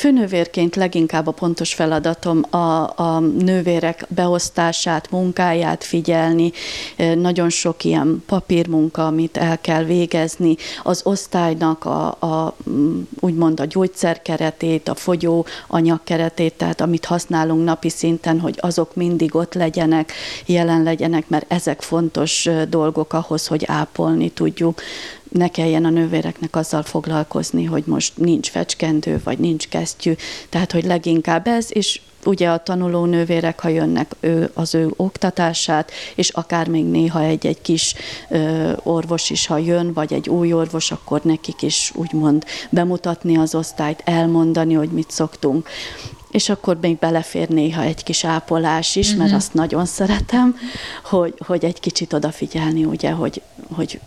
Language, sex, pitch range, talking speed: Hungarian, female, 160-175 Hz, 135 wpm